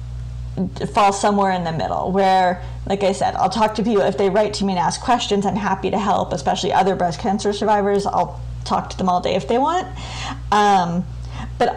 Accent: American